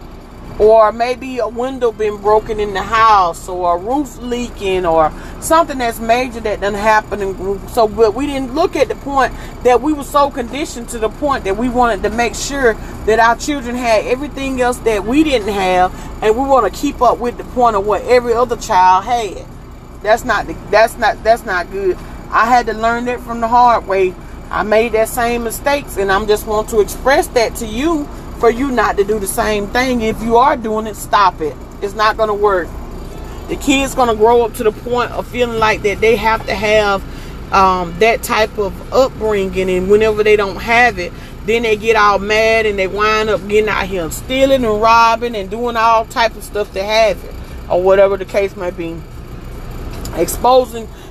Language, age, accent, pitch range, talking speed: English, 40-59, American, 205-245 Hz, 205 wpm